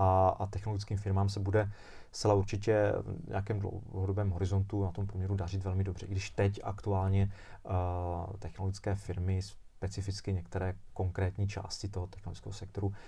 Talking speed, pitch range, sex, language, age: 140 wpm, 95-110 Hz, male, Czech, 30-49